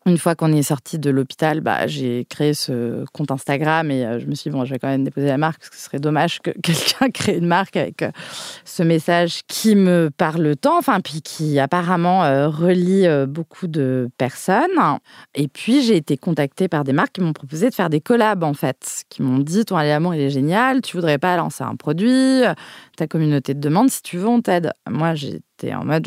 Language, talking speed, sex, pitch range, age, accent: French, 230 wpm, female, 135-175 Hz, 30-49, French